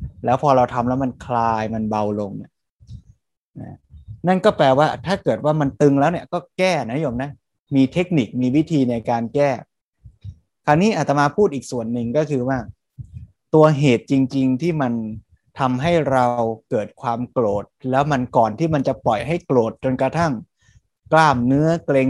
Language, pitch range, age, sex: Thai, 120-155 Hz, 20-39, male